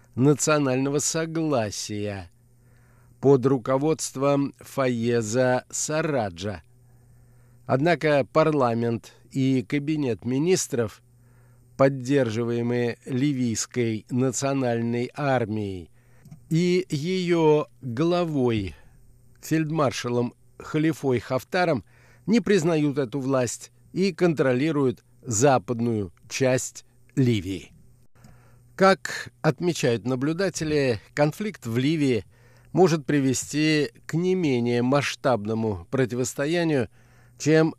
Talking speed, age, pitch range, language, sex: 70 wpm, 50-69, 120-145 Hz, Russian, male